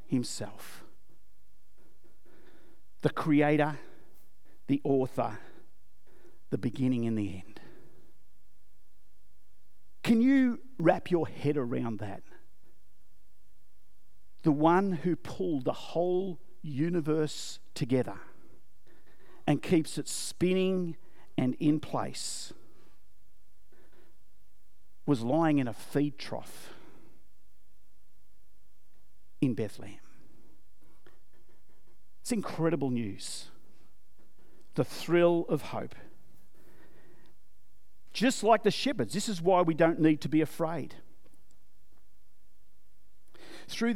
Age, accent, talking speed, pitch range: 50-69, Australian, 80 wpm, 115-185 Hz